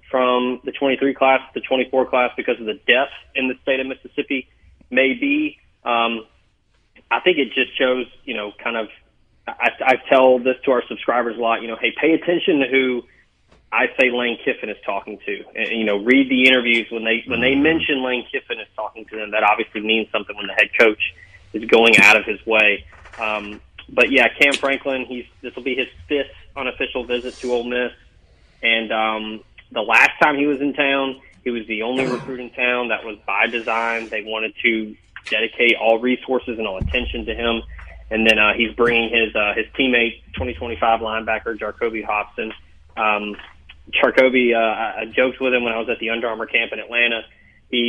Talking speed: 200 wpm